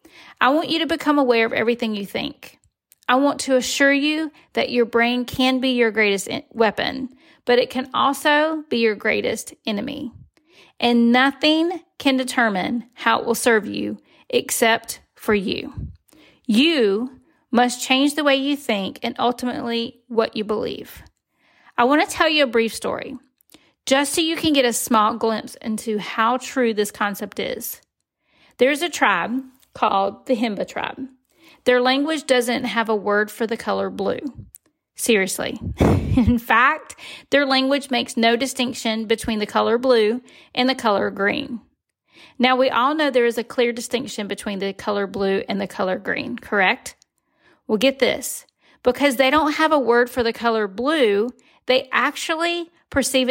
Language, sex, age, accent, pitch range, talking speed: English, female, 40-59, American, 225-280 Hz, 165 wpm